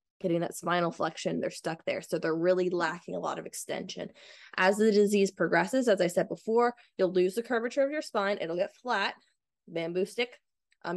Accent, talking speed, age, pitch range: American, 195 wpm, 20-39, 170-205 Hz